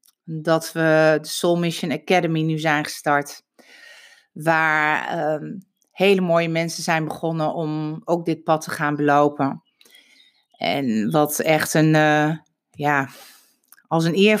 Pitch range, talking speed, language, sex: 145-185 Hz, 125 wpm, Dutch, female